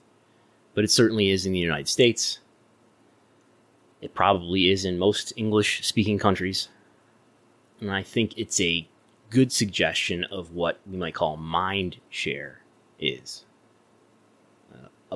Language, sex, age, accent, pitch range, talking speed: English, male, 30-49, American, 90-110 Hz, 125 wpm